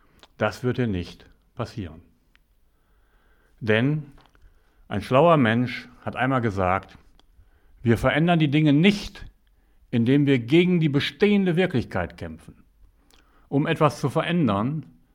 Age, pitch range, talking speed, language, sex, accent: 60-79, 90-135 Hz, 110 wpm, German, male, German